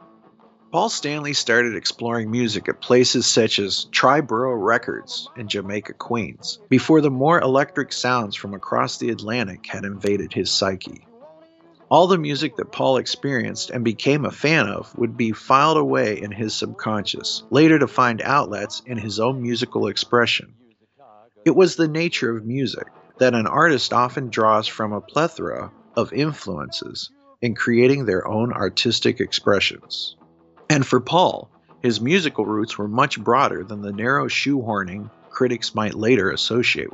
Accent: American